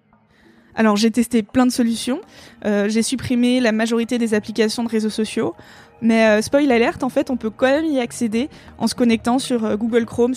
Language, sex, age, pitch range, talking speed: French, female, 20-39, 220-255 Hz, 195 wpm